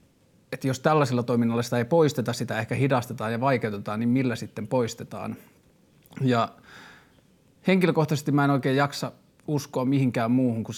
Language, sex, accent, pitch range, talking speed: Finnish, male, native, 110-130 Hz, 145 wpm